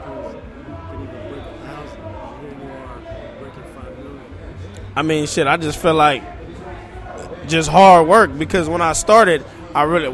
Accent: American